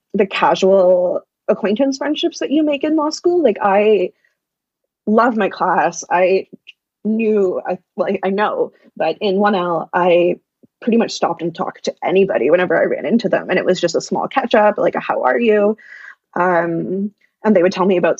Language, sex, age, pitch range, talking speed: English, female, 20-39, 190-240 Hz, 190 wpm